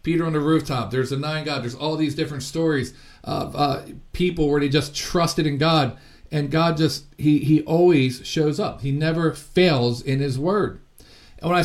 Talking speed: 200 wpm